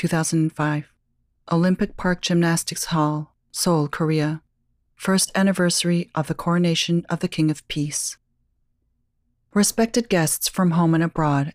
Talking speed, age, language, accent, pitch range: 120 wpm, 40-59, English, American, 155-180 Hz